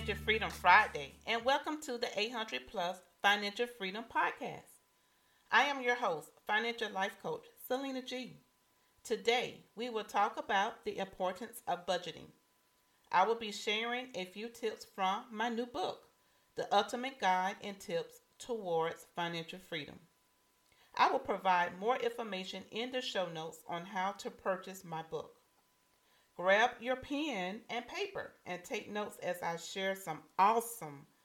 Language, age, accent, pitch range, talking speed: English, 40-59, American, 180-240 Hz, 145 wpm